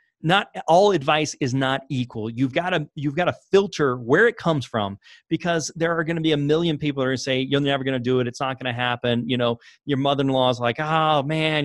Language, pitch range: English, 125-150 Hz